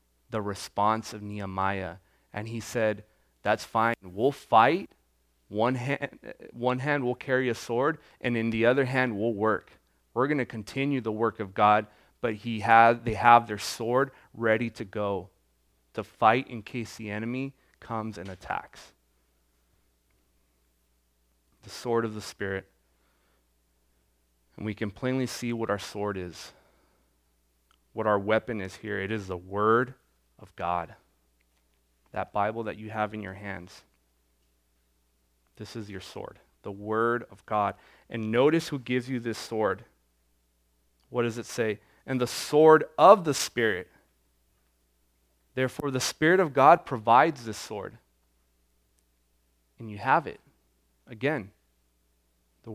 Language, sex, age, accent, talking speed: English, male, 30-49, American, 140 wpm